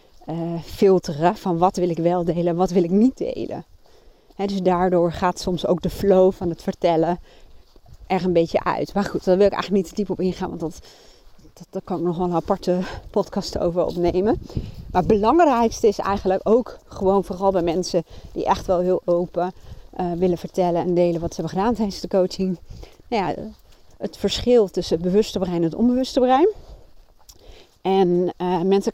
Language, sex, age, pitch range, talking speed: Dutch, female, 30-49, 175-200 Hz, 195 wpm